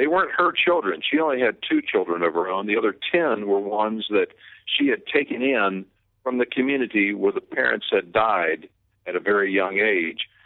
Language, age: English, 50-69